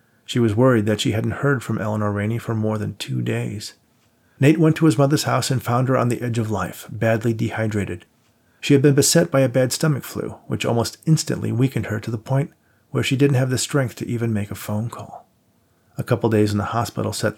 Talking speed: 230 wpm